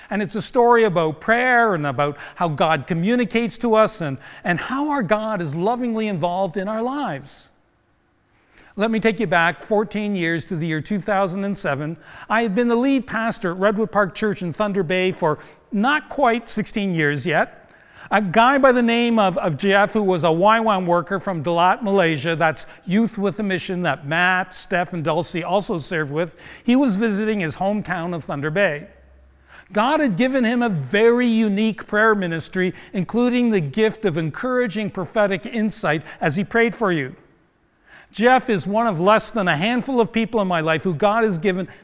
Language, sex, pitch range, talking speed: English, male, 170-220 Hz, 185 wpm